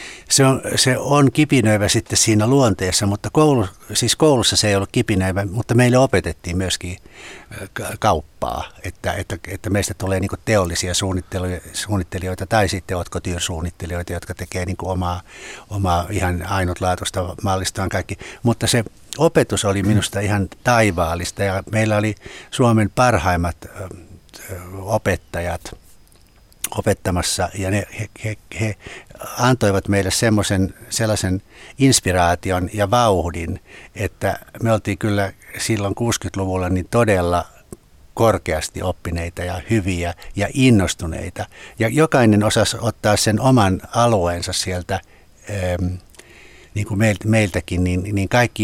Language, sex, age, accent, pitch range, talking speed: Finnish, male, 60-79, native, 90-110 Hz, 115 wpm